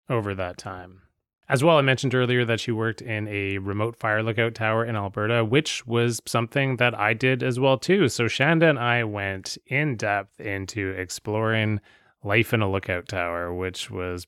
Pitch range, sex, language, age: 95-120 Hz, male, English, 20-39